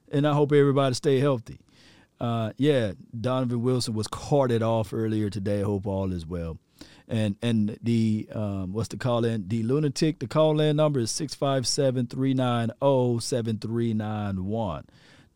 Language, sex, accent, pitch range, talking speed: English, male, American, 90-125 Hz, 140 wpm